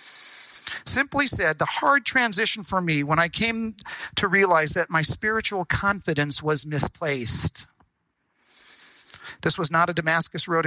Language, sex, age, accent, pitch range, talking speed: English, male, 50-69, American, 145-190 Hz, 135 wpm